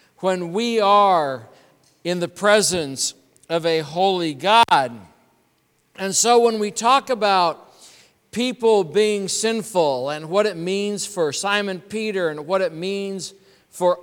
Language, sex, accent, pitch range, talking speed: English, male, American, 155-210 Hz, 135 wpm